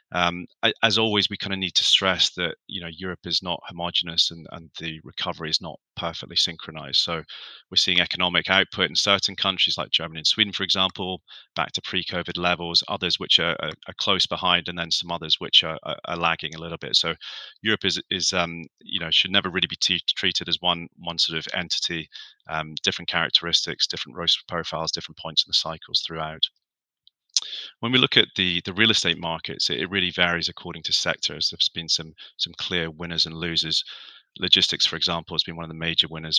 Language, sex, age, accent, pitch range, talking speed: English, male, 30-49, British, 80-90 Hz, 205 wpm